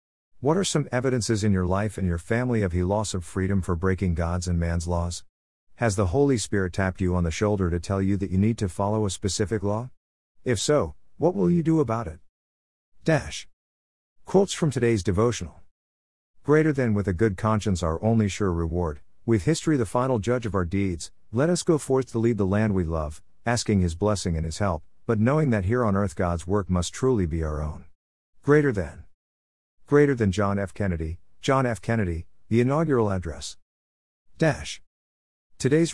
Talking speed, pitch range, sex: 195 wpm, 85-120 Hz, male